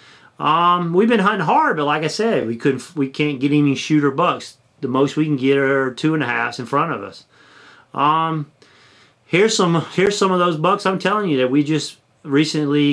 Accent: American